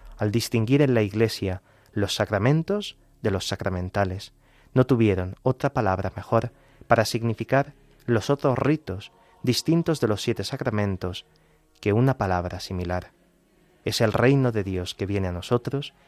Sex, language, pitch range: male, Spanish, 100-125 Hz